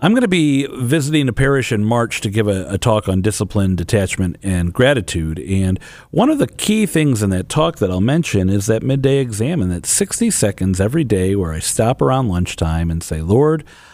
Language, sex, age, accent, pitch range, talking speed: English, male, 50-69, American, 95-140 Hz, 205 wpm